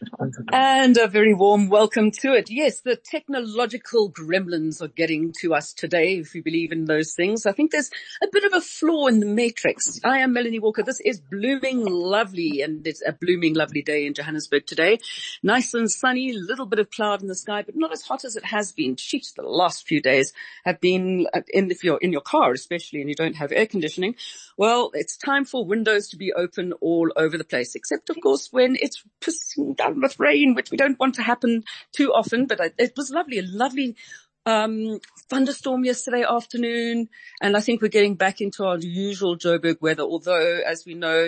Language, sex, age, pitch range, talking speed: German, female, 40-59, 165-250 Hz, 205 wpm